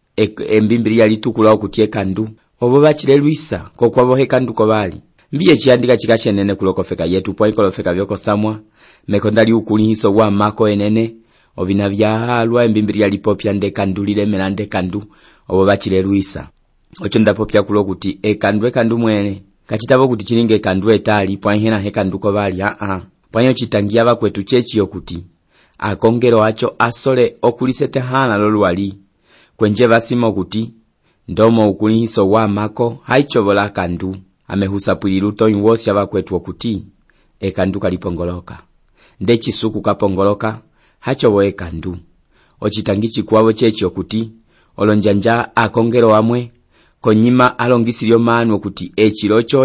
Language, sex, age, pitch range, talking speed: English, male, 30-49, 100-115 Hz, 140 wpm